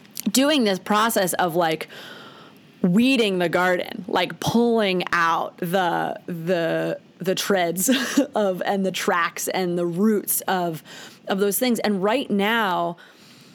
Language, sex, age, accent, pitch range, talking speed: English, female, 30-49, American, 180-245 Hz, 130 wpm